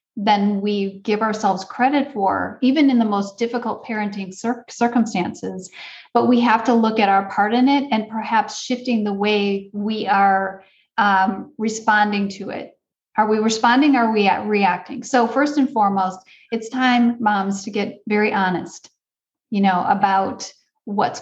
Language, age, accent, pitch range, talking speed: English, 40-59, American, 200-240 Hz, 160 wpm